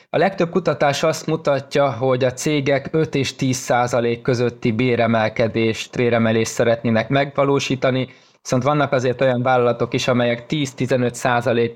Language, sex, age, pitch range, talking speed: Hungarian, male, 20-39, 115-135 Hz, 130 wpm